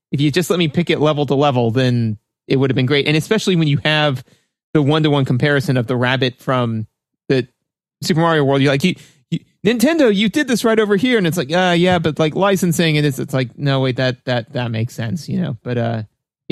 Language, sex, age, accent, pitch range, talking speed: English, male, 30-49, American, 125-160 Hz, 250 wpm